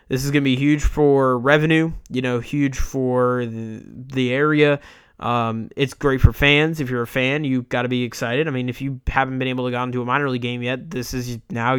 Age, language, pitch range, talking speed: 20-39, English, 125-150 Hz, 240 wpm